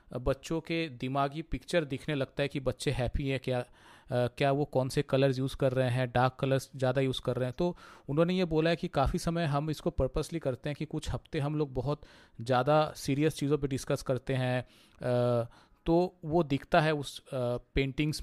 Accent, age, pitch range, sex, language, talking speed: native, 40-59, 135-165 Hz, male, Hindi, 205 wpm